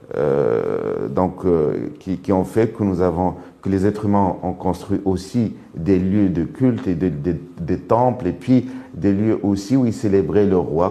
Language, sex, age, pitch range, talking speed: French, male, 50-69, 90-110 Hz, 205 wpm